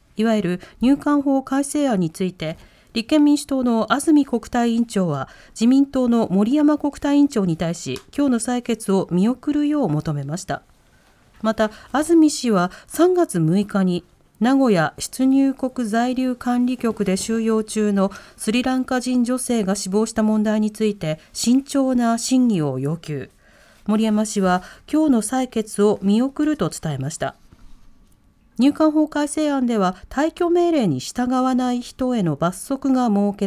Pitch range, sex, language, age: 195-260 Hz, female, Japanese, 40-59